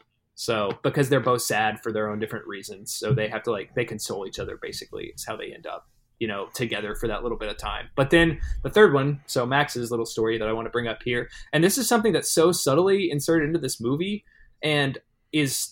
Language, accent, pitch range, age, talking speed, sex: English, American, 120-140 Hz, 20-39, 240 wpm, male